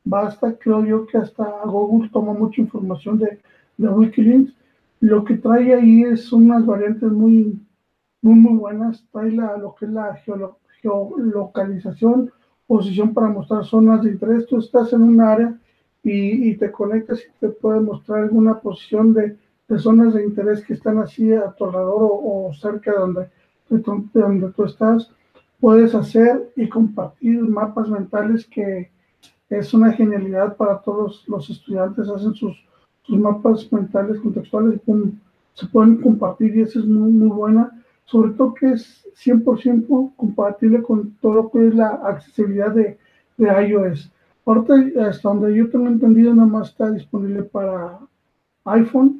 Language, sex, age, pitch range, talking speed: Spanish, male, 50-69, 205-230 Hz, 155 wpm